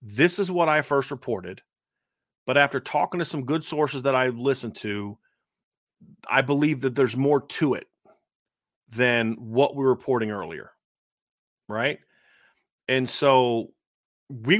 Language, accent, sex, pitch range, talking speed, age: English, American, male, 125-165 Hz, 140 wpm, 30-49